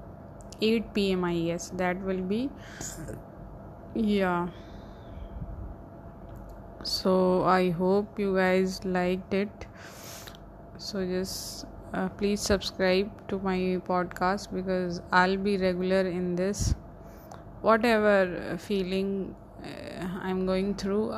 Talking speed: 95 wpm